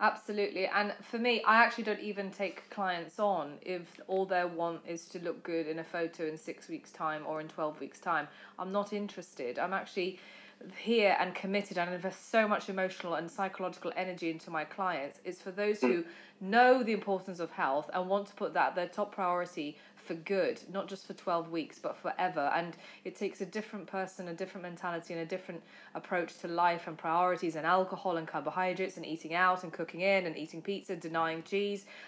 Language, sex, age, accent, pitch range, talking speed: English, female, 20-39, British, 175-215 Hz, 200 wpm